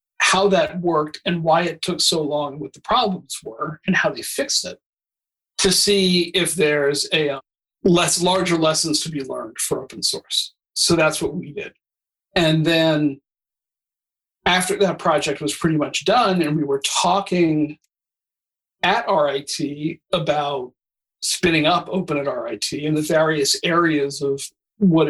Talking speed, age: 155 wpm, 50-69